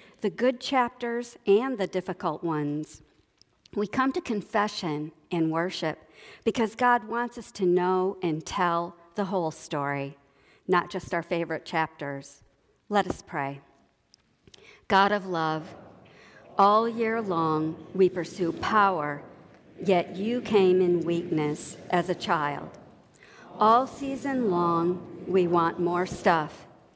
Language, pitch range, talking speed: English, 165-205 Hz, 125 wpm